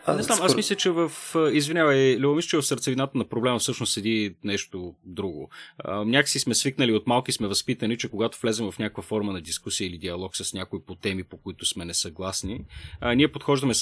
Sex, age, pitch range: male, 30-49, 105-150 Hz